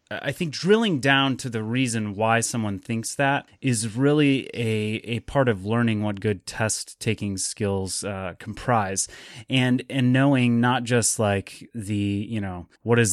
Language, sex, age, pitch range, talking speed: English, male, 30-49, 100-120 Hz, 160 wpm